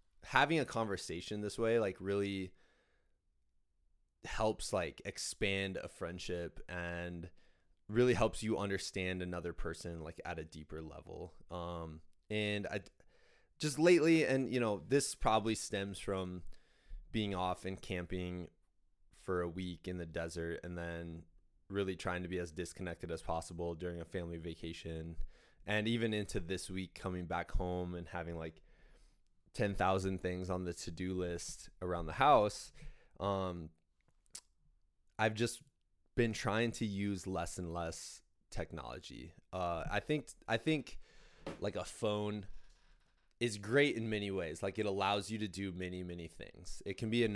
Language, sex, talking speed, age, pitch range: English, male, 150 wpm, 20-39, 85-105 Hz